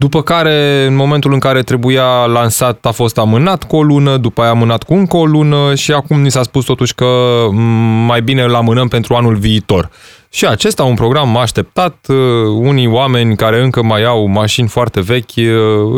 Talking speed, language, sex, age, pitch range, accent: 190 wpm, Romanian, male, 20-39, 105-145 Hz, native